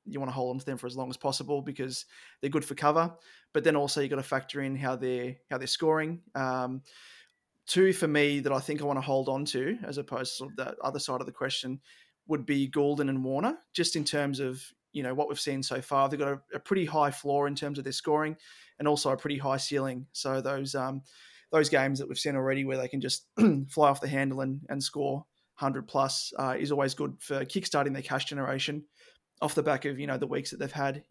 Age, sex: 20-39, male